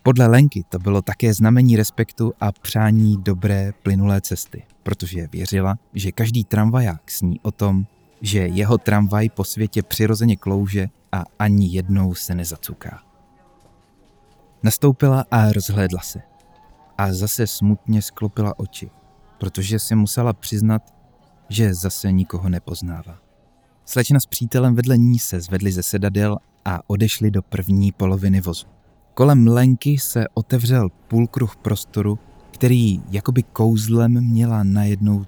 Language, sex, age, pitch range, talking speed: Czech, male, 30-49, 95-115 Hz, 130 wpm